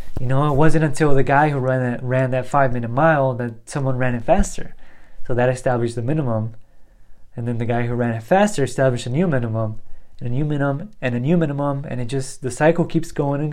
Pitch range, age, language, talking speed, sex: 115-140 Hz, 20-39, English, 225 wpm, male